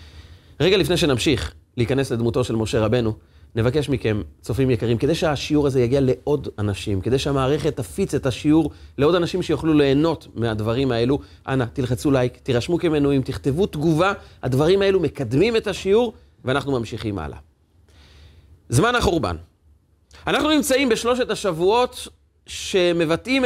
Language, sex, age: Hebrew, male, 30-49